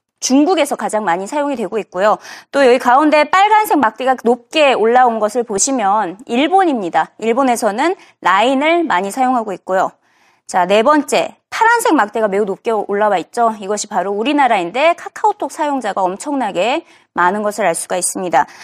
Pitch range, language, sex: 225-345 Hz, Korean, female